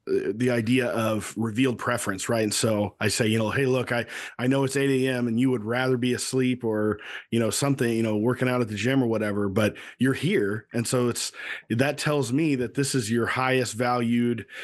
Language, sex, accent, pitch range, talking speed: English, male, American, 110-130 Hz, 215 wpm